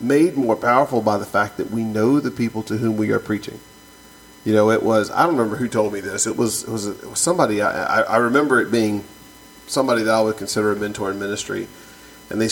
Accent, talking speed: American, 240 wpm